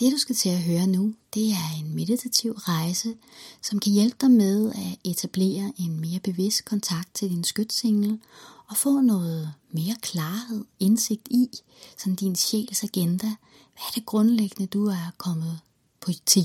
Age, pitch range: 30-49, 165-220 Hz